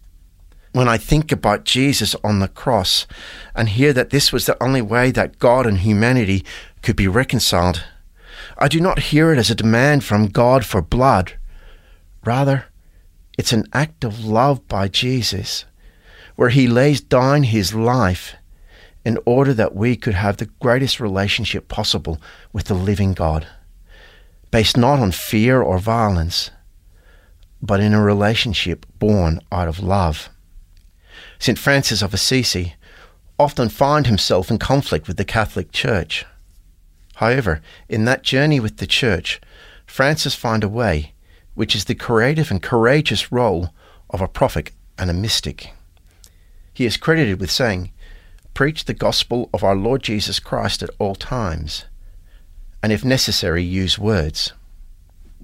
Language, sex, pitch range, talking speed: English, male, 85-120 Hz, 145 wpm